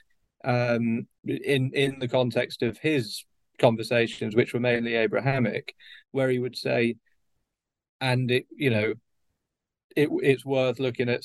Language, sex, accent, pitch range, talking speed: English, male, British, 115-135 Hz, 135 wpm